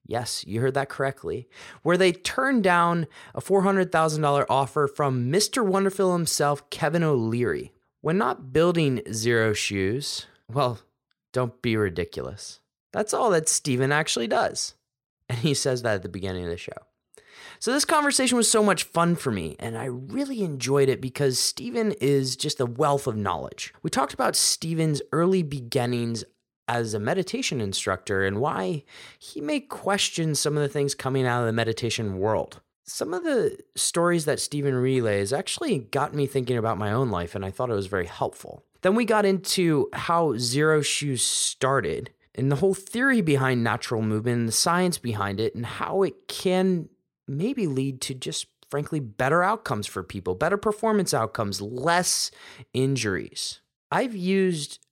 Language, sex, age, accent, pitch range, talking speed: English, male, 20-39, American, 120-180 Hz, 165 wpm